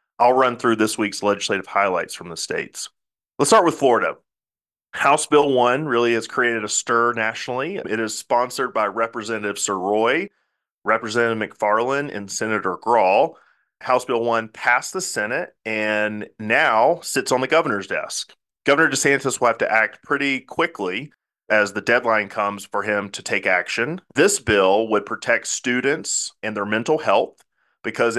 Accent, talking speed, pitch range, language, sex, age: American, 160 wpm, 100-130 Hz, English, male, 30-49